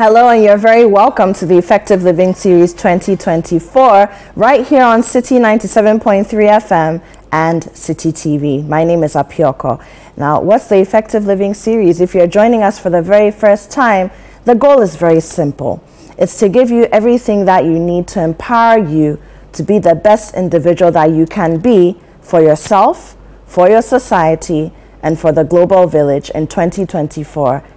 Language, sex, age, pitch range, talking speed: English, female, 30-49, 160-215 Hz, 165 wpm